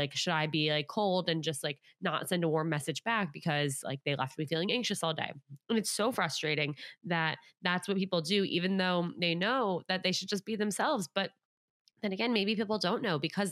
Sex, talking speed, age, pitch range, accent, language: female, 225 wpm, 20-39, 165-215 Hz, American, English